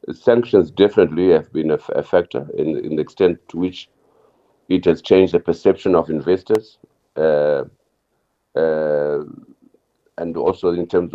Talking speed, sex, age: 145 wpm, male, 50-69